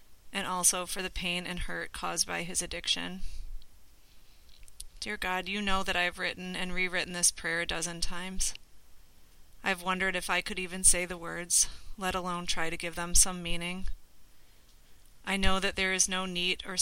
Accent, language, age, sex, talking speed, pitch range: American, English, 30-49, female, 185 wpm, 170-185 Hz